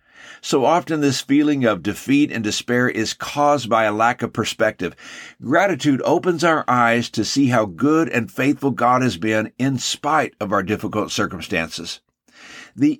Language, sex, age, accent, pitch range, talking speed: English, male, 50-69, American, 115-135 Hz, 160 wpm